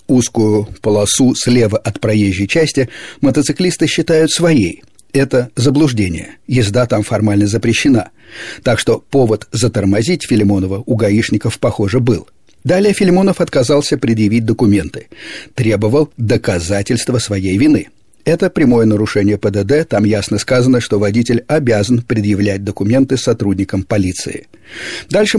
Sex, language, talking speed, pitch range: male, Russian, 115 wpm, 105-140 Hz